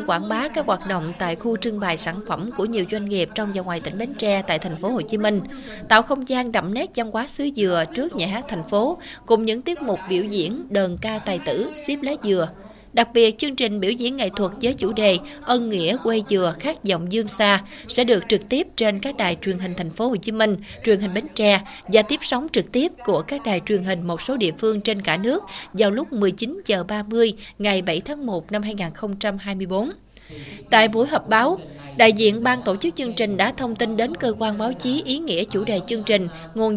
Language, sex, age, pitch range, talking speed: Vietnamese, female, 20-39, 195-240 Hz, 235 wpm